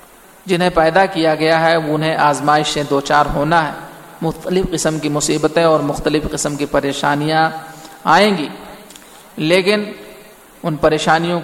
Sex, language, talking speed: male, Urdu, 135 wpm